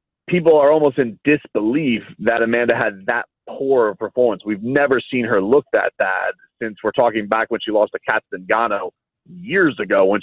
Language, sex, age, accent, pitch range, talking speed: English, male, 30-49, American, 115-155 Hz, 180 wpm